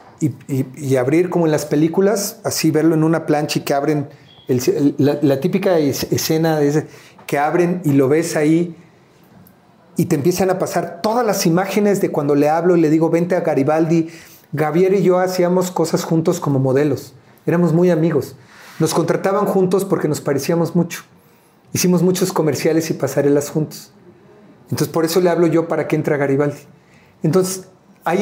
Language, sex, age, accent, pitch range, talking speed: Spanish, male, 40-59, Mexican, 150-180 Hz, 185 wpm